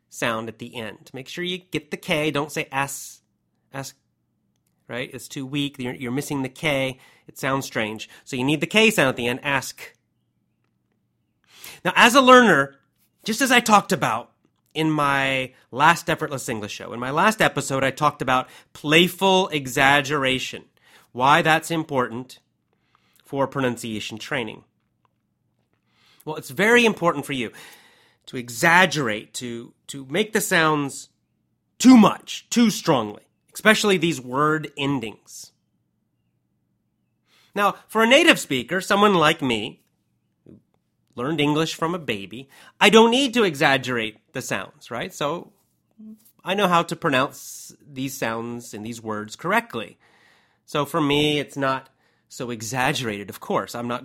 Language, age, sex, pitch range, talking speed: English, 30-49, male, 130-170 Hz, 145 wpm